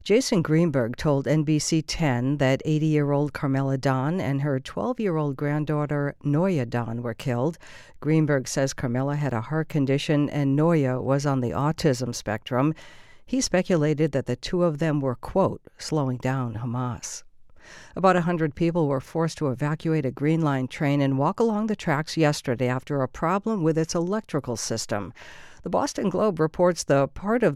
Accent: American